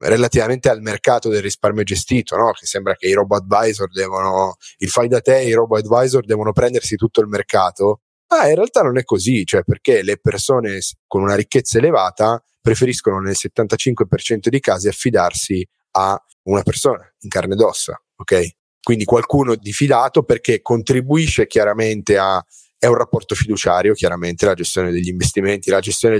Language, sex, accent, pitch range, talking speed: Italian, male, native, 105-140 Hz, 165 wpm